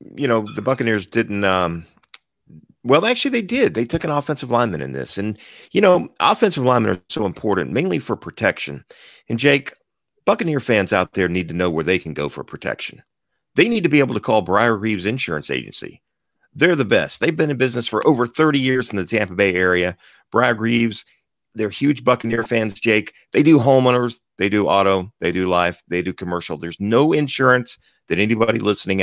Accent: American